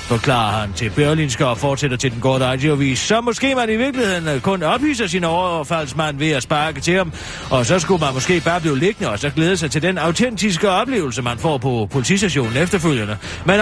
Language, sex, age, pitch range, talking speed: Danish, male, 40-59, 130-210 Hz, 205 wpm